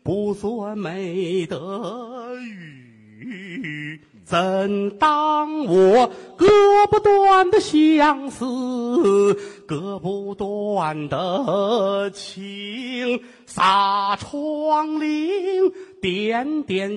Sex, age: male, 40-59